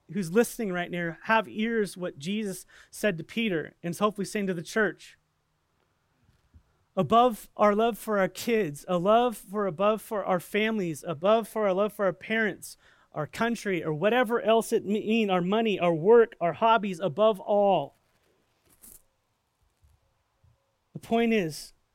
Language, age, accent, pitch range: English, 30-49, American, 135-205 Hz